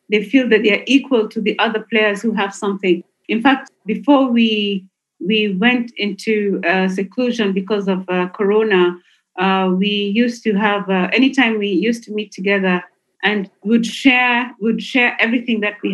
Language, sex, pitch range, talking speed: English, female, 195-240 Hz, 175 wpm